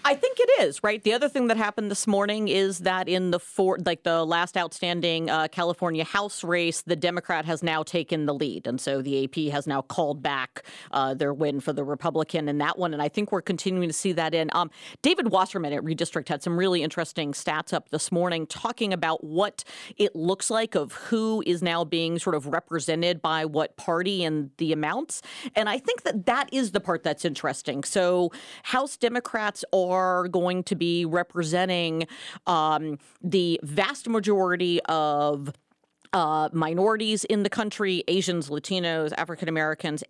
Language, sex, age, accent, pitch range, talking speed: English, female, 40-59, American, 165-200 Hz, 185 wpm